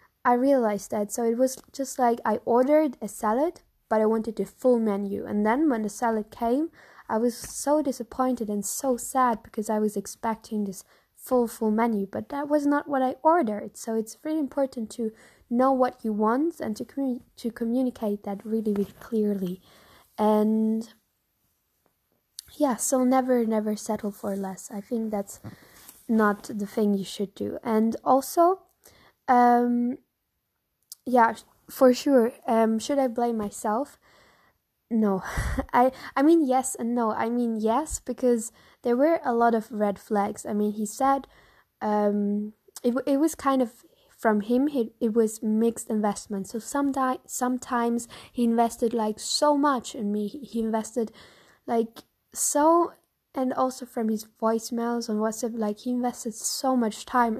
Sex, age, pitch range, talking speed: female, 10-29, 215-260 Hz, 160 wpm